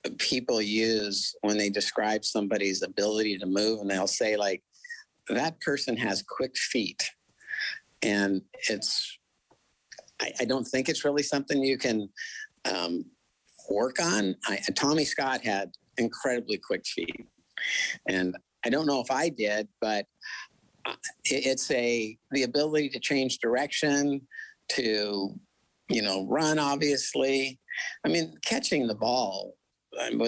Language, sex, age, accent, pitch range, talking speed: English, male, 50-69, American, 105-140 Hz, 125 wpm